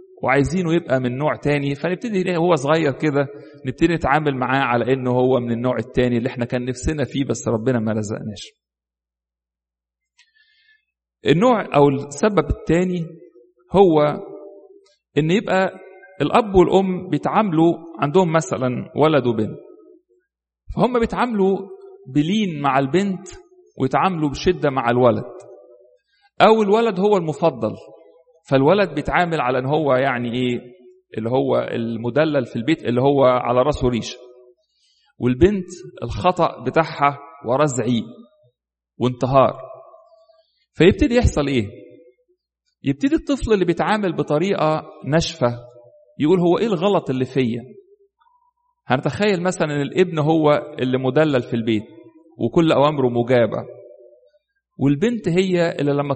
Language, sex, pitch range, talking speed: English, male, 130-195 Hz, 115 wpm